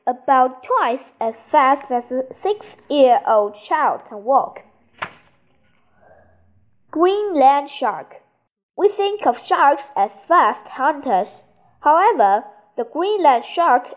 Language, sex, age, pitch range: Chinese, female, 20-39, 230-340 Hz